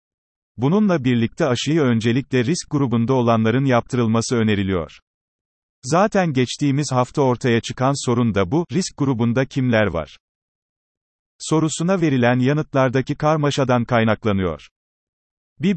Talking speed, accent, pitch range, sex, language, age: 100 wpm, native, 110-145 Hz, male, Turkish, 40-59